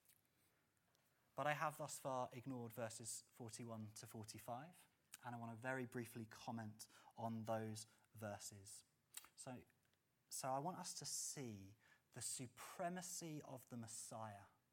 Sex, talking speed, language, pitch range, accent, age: male, 130 wpm, English, 115-180 Hz, British, 30-49